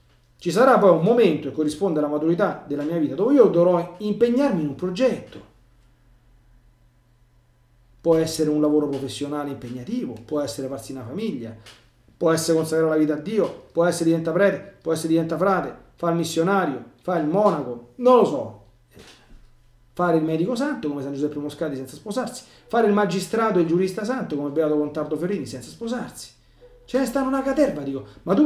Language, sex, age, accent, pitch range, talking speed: Italian, male, 40-59, native, 125-195 Hz, 180 wpm